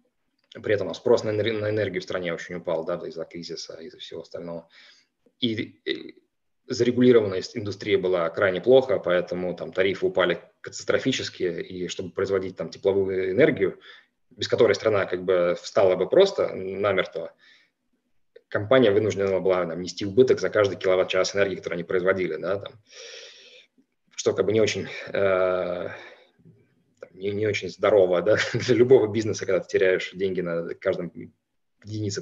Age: 20-39